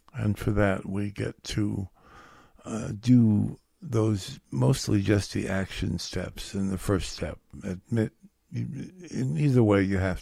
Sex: male